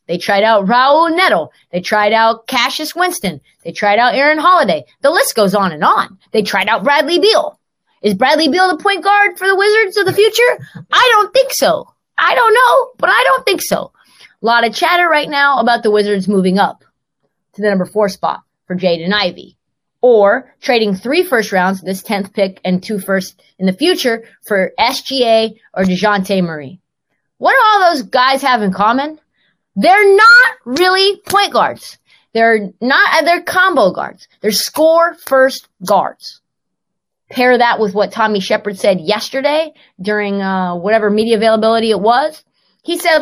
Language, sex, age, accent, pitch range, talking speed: English, female, 30-49, American, 205-325 Hz, 175 wpm